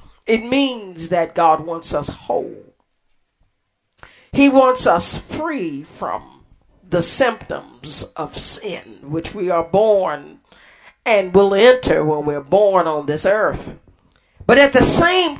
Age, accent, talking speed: 50-69, American, 130 wpm